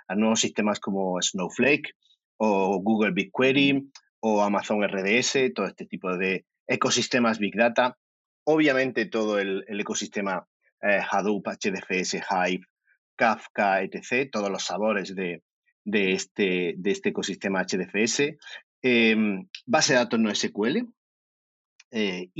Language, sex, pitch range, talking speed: Spanish, male, 95-125 Hz, 125 wpm